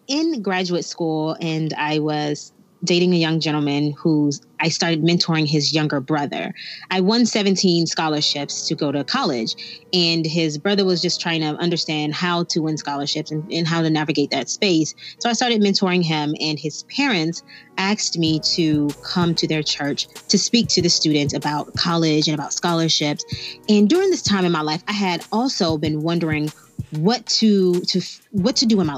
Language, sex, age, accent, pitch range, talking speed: English, female, 30-49, American, 155-195 Hz, 185 wpm